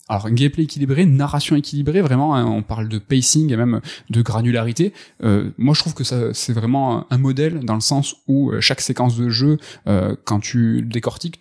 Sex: male